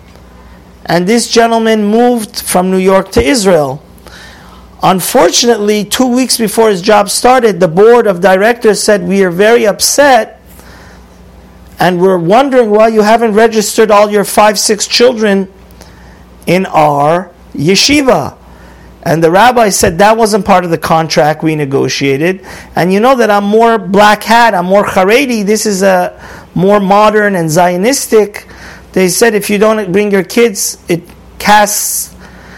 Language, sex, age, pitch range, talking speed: English, male, 50-69, 185-225 Hz, 150 wpm